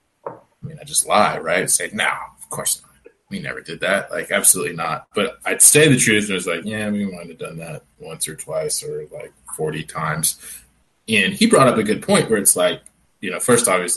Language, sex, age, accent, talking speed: English, male, 20-39, American, 230 wpm